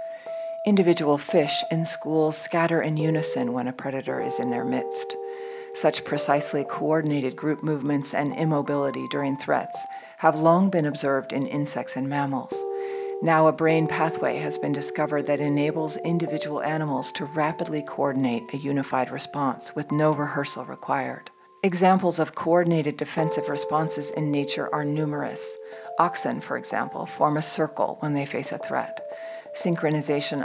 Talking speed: 145 wpm